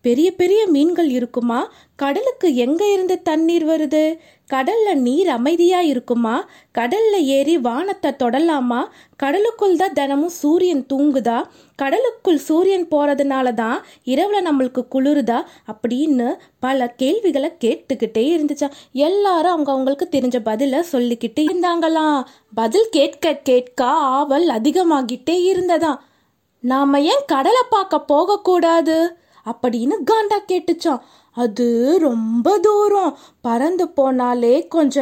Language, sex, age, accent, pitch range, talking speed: Tamil, female, 20-39, native, 255-340 Hz, 100 wpm